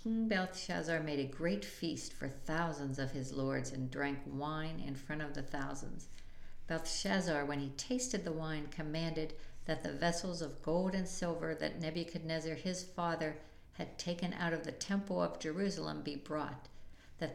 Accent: American